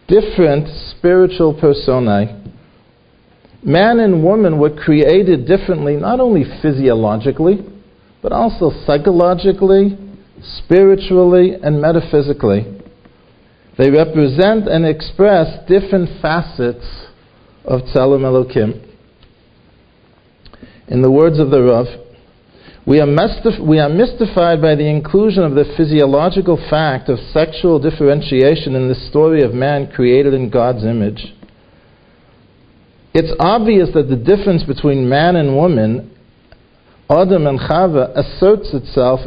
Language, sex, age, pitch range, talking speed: English, male, 50-69, 130-180 Hz, 105 wpm